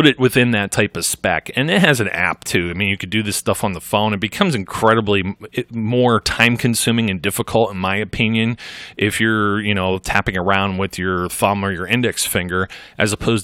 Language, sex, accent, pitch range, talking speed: English, male, American, 95-115 Hz, 210 wpm